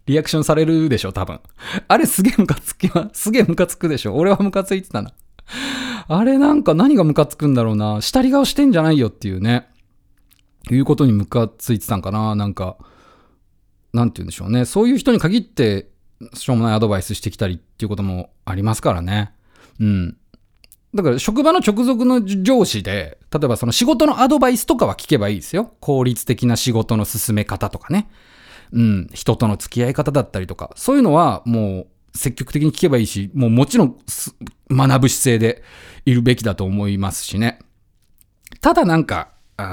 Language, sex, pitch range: Japanese, male, 100-155 Hz